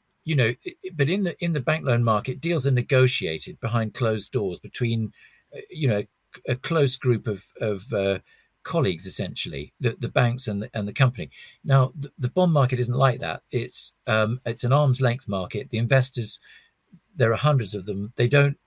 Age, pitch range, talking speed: 50-69, 110-140 Hz, 190 wpm